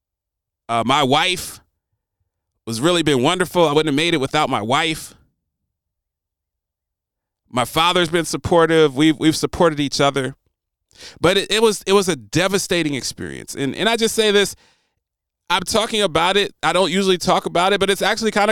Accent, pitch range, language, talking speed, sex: American, 115-175 Hz, English, 170 wpm, male